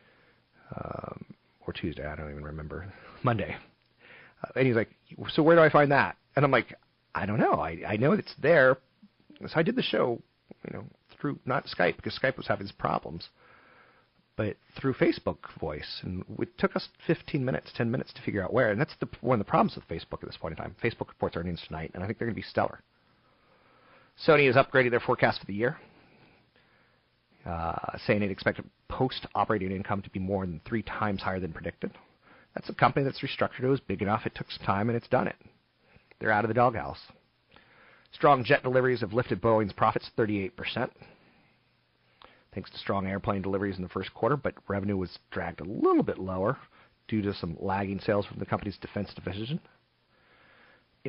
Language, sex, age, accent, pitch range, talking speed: English, male, 40-59, American, 95-130 Hz, 195 wpm